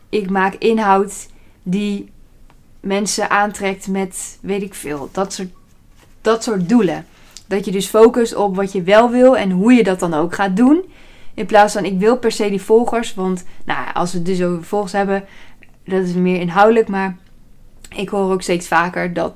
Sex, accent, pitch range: female, Dutch, 180-215 Hz